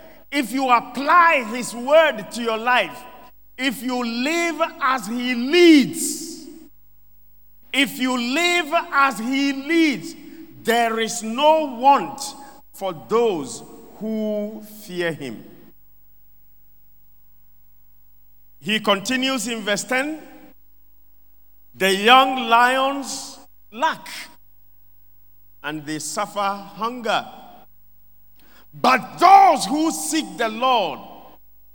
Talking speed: 85 wpm